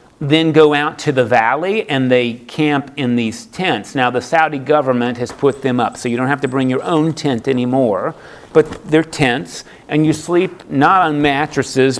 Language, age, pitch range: English, 40-59, 125-150 Hz